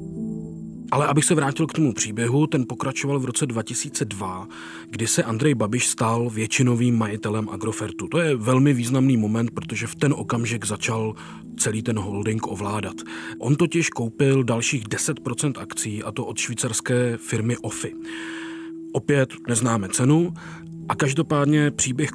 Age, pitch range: 40-59, 110-145 Hz